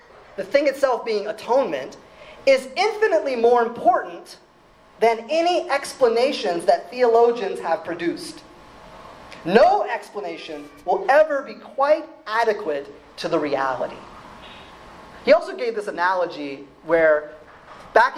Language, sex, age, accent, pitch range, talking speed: English, male, 30-49, American, 215-350 Hz, 110 wpm